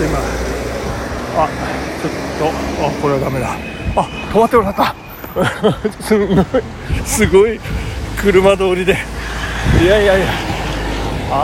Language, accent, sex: Japanese, native, male